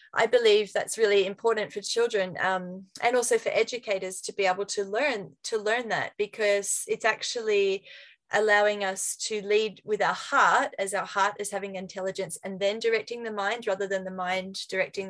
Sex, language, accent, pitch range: female, English, Australian, 195-245 Hz